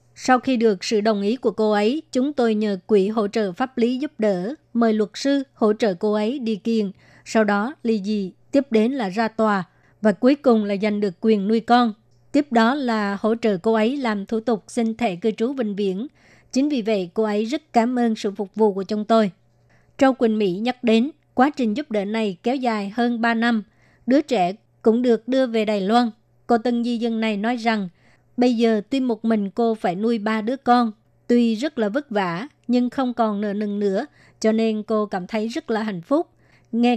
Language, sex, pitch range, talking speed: Vietnamese, male, 210-240 Hz, 225 wpm